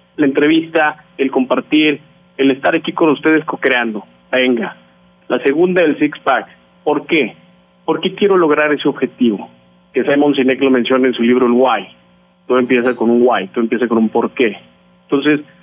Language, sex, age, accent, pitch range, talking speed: Spanish, male, 40-59, Mexican, 110-160 Hz, 175 wpm